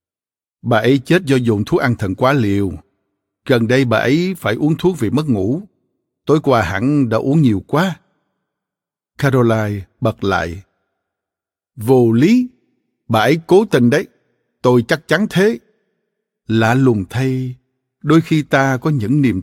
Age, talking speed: 60-79, 155 wpm